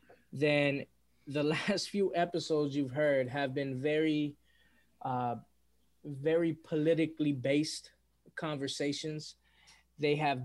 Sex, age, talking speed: male, 20-39, 100 wpm